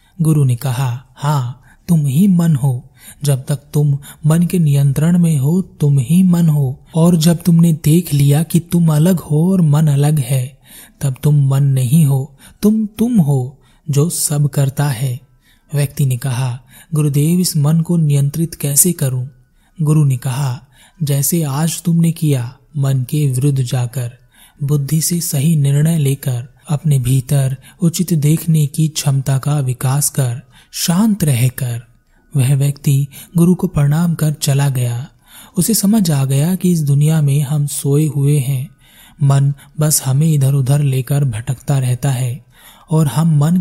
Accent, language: native, Hindi